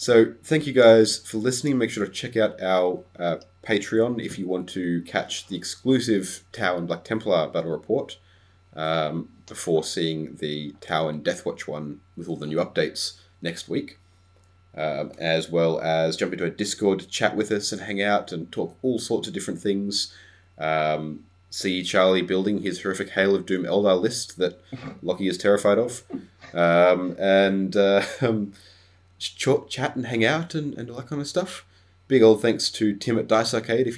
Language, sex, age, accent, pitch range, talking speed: English, male, 30-49, Australian, 85-105 Hz, 180 wpm